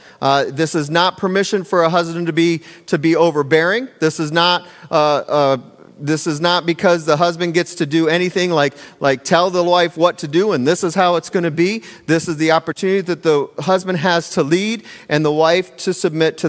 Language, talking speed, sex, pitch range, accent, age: English, 220 wpm, male, 135-170 Hz, American, 40-59